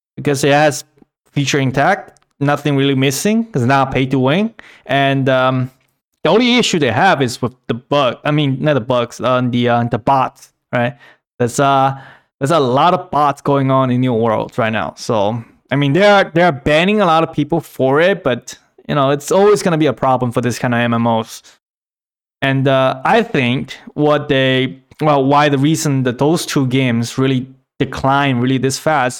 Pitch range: 130-160 Hz